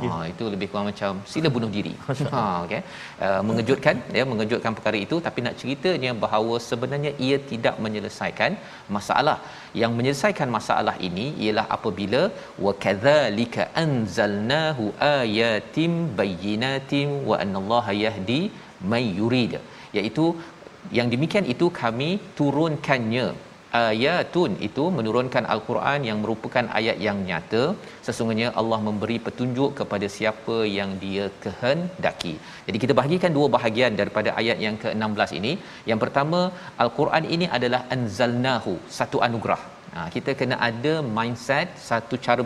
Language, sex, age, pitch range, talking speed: Malayalam, male, 40-59, 110-140 Hz, 130 wpm